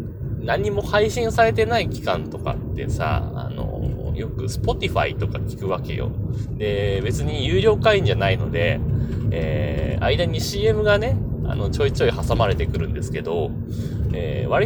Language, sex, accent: Japanese, male, native